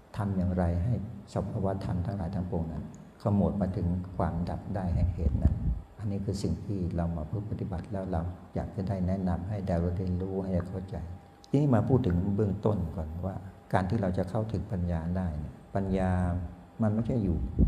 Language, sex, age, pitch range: Thai, male, 60-79, 90-100 Hz